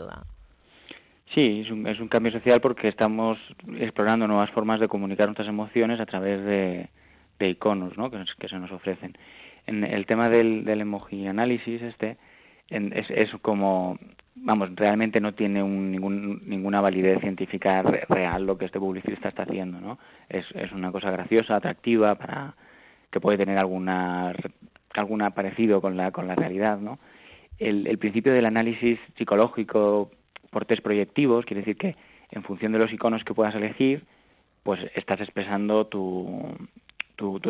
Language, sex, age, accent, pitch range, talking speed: Spanish, male, 20-39, Spanish, 95-110 Hz, 160 wpm